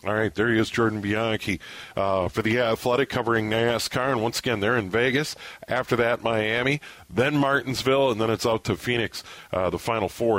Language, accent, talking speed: English, American, 195 wpm